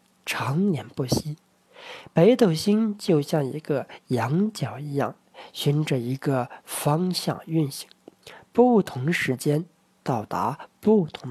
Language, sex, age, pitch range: Chinese, male, 50-69, 145-190 Hz